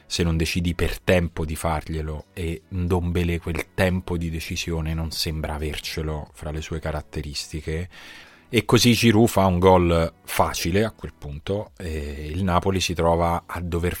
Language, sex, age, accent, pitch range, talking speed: Italian, male, 30-49, native, 80-95 Hz, 155 wpm